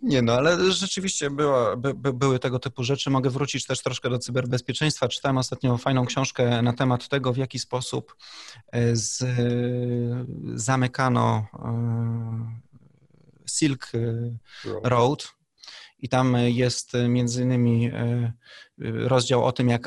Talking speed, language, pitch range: 110 wpm, Polish, 120-135 Hz